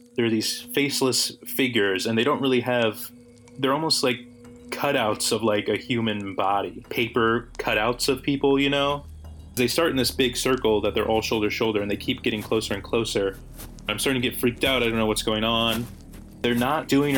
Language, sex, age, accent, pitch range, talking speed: English, male, 20-39, American, 100-125 Hz, 205 wpm